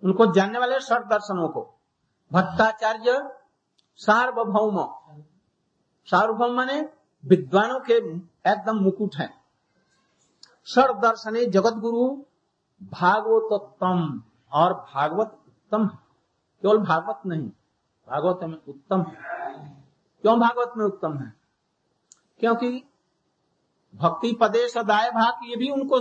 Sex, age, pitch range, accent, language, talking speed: male, 60-79, 165-230 Hz, native, Hindi, 100 wpm